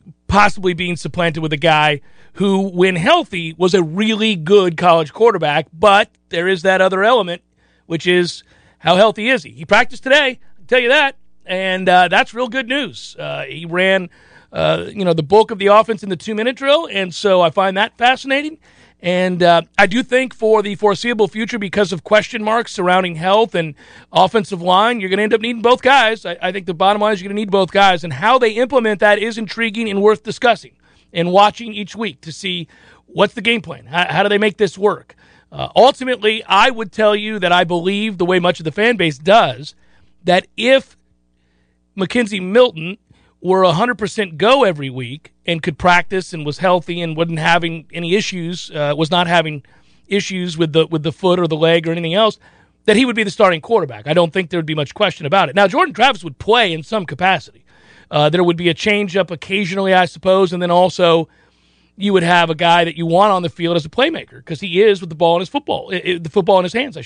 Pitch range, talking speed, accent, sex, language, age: 170-215 Hz, 220 wpm, American, male, English, 40-59